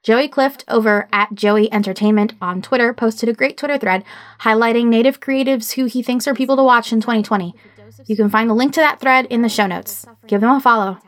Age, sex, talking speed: 20-39, female, 220 wpm